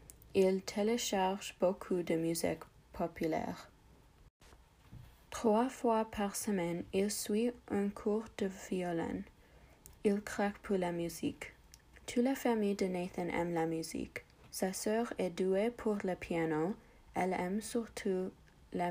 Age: 30-49